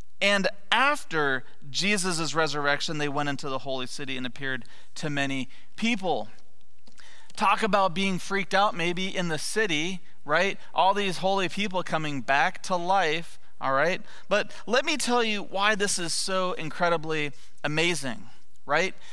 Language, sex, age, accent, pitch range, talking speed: English, male, 30-49, American, 135-190 Hz, 145 wpm